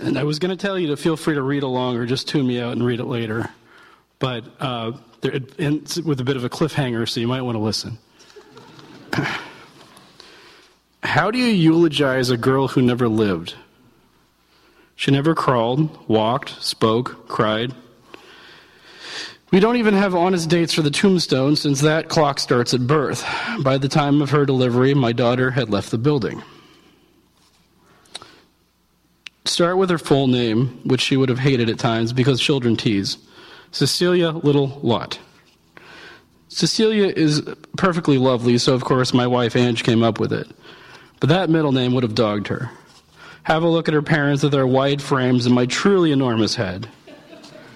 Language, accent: English, American